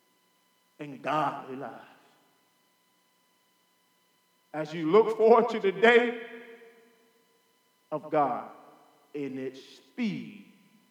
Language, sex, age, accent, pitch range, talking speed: English, male, 40-59, American, 210-250 Hz, 85 wpm